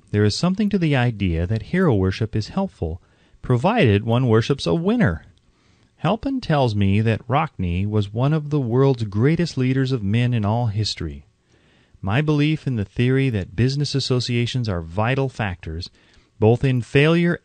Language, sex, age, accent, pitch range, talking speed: English, male, 30-49, American, 100-145 Hz, 160 wpm